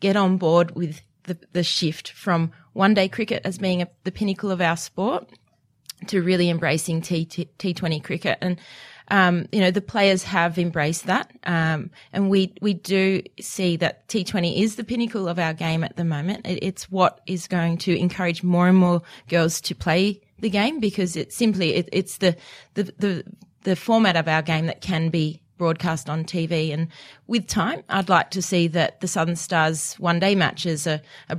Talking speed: 195 wpm